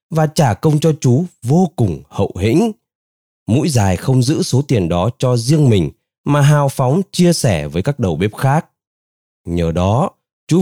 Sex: male